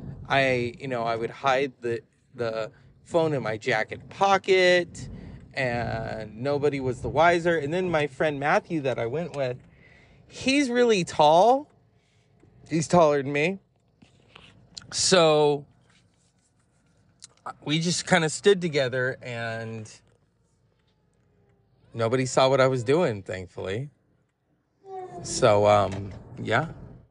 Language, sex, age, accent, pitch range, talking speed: English, male, 30-49, American, 125-185 Hz, 115 wpm